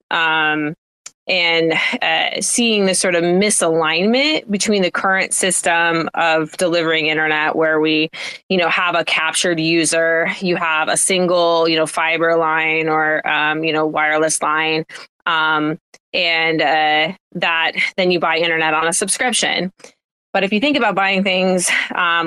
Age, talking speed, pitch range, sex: 20-39, 150 wpm, 155-180 Hz, female